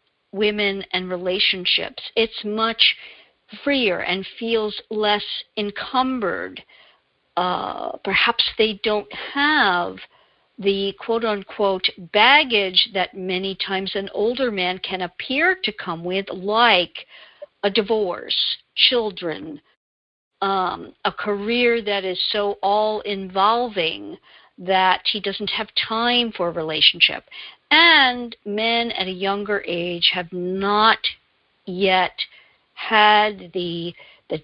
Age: 50-69